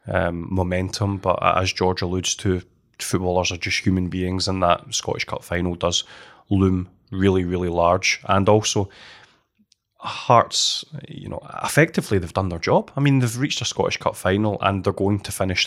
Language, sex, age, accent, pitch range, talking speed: English, male, 20-39, British, 95-110 Hz, 170 wpm